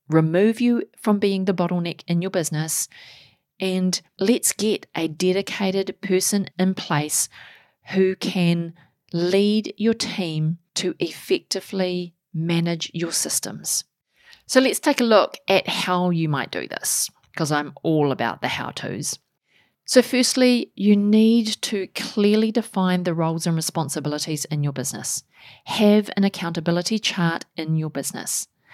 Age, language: 40-59, English